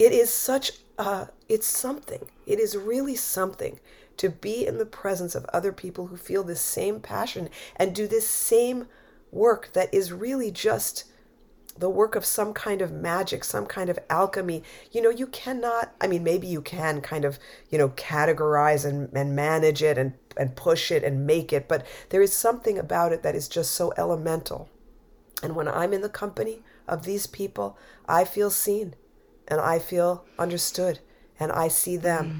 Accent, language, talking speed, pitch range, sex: American, English, 185 wpm, 150-195 Hz, female